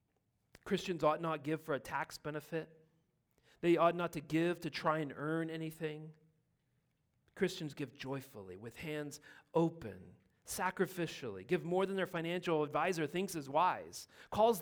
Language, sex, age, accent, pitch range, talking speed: English, male, 40-59, American, 125-160 Hz, 145 wpm